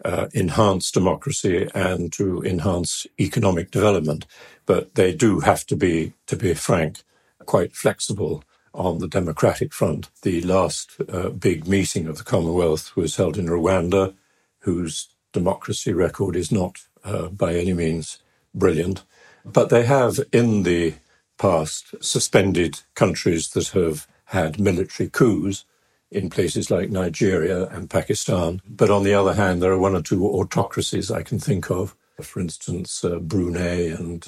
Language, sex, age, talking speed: English, male, 60-79, 145 wpm